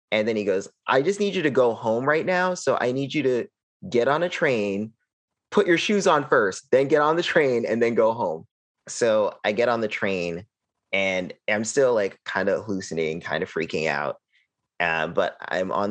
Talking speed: 215 wpm